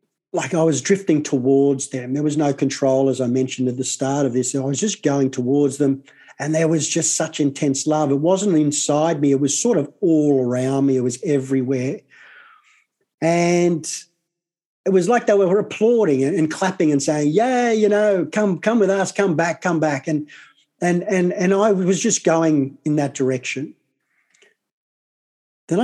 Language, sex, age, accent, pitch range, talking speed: English, male, 50-69, Australian, 135-175 Hz, 185 wpm